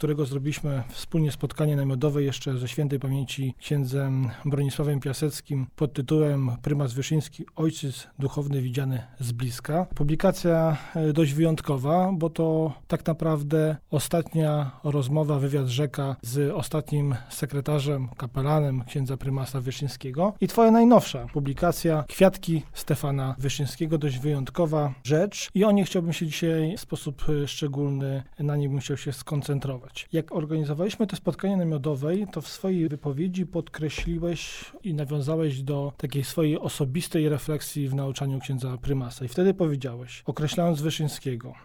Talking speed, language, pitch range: 130 wpm, Polish, 140-165 Hz